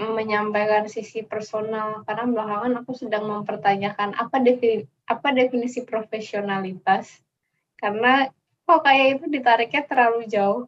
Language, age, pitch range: Indonesian, 10-29, 195-235 Hz